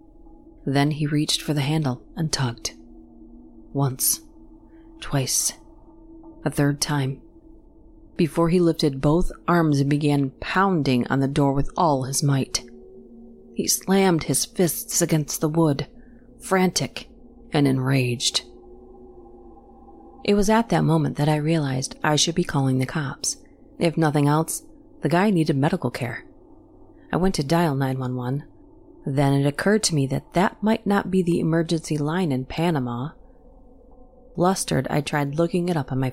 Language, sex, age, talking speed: English, female, 40-59, 145 wpm